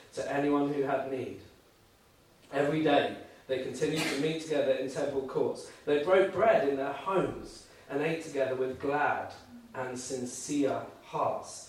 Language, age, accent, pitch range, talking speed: English, 40-59, British, 140-200 Hz, 150 wpm